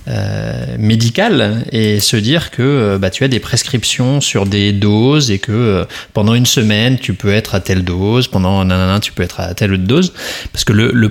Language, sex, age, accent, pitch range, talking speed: French, male, 20-39, French, 100-125 Hz, 220 wpm